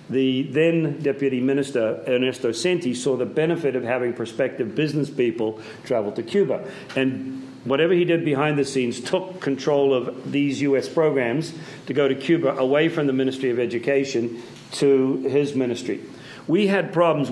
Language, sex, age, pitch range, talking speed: English, male, 50-69, 125-160 Hz, 160 wpm